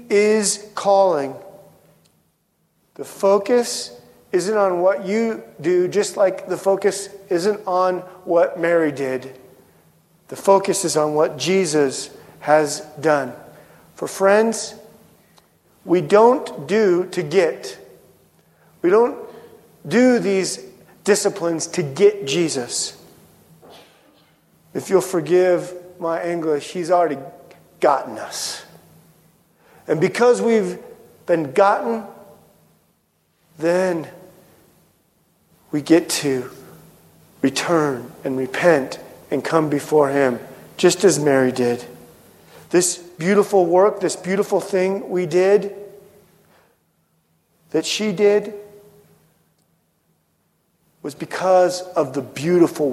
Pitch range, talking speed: 155-200 Hz, 95 wpm